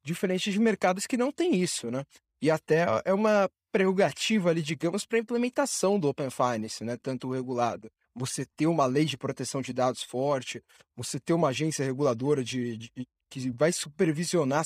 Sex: male